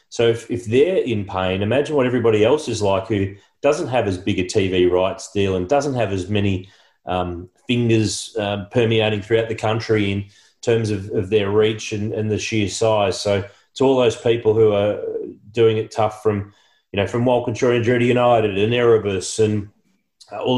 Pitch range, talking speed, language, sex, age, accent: 100-115 Hz, 195 wpm, English, male, 30-49, Australian